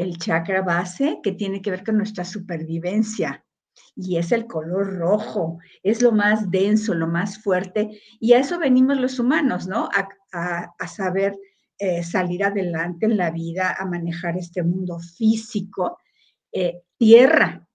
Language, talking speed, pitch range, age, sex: English, 155 wpm, 175-220 Hz, 50-69, female